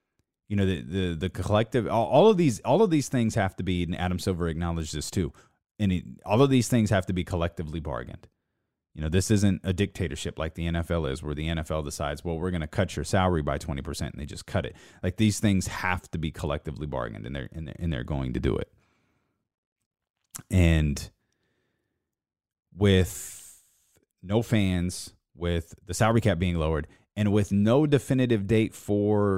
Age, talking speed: 30-49, 195 wpm